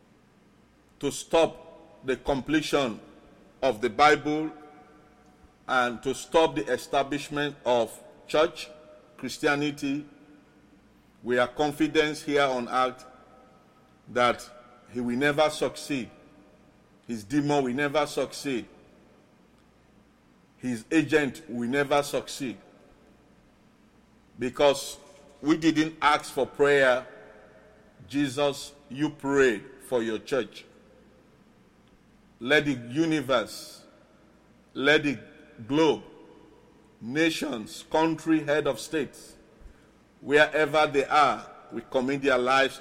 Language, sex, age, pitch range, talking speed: English, male, 50-69, 130-155 Hz, 95 wpm